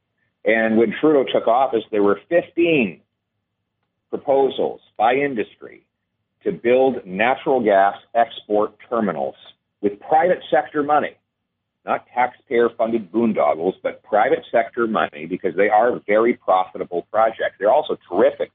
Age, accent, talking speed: 40-59, American, 125 wpm